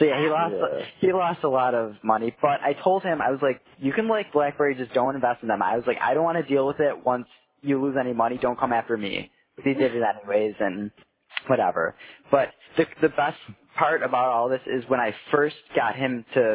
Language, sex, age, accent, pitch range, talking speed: English, male, 10-29, American, 115-140 Hz, 240 wpm